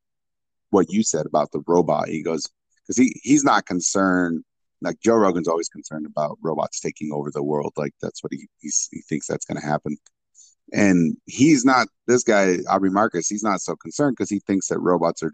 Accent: American